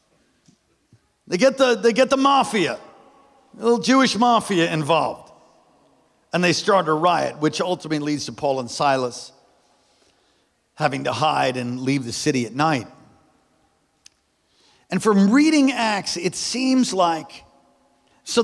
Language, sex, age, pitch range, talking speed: English, male, 50-69, 215-300 Hz, 125 wpm